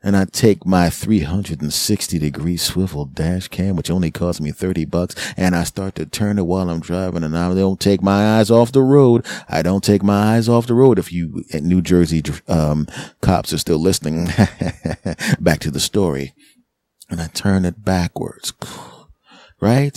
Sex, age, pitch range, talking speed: male, 30-49, 90-105 Hz, 180 wpm